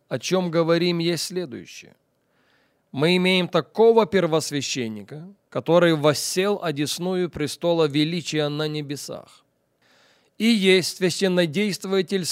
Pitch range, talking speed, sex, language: 140-185 Hz, 95 wpm, male, English